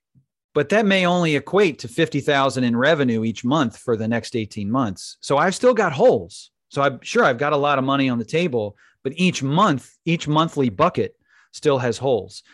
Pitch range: 115-165 Hz